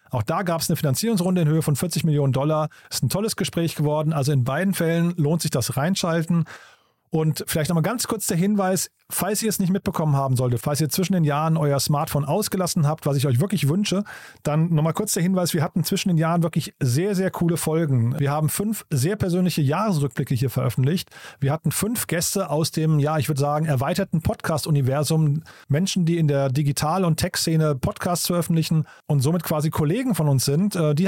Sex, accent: male, German